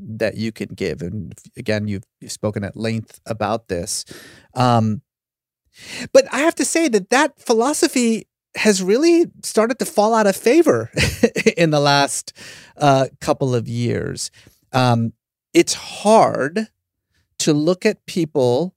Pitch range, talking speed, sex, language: 110-165 Hz, 140 wpm, male, English